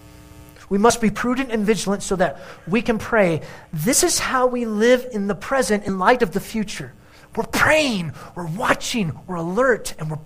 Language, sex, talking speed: English, male, 185 wpm